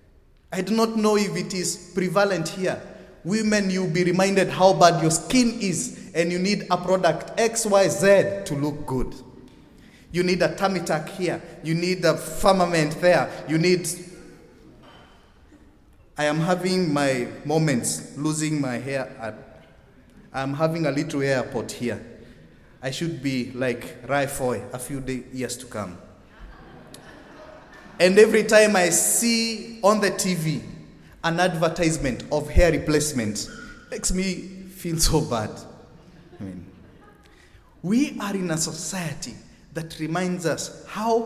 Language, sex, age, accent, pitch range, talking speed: English, male, 30-49, South African, 140-200 Hz, 140 wpm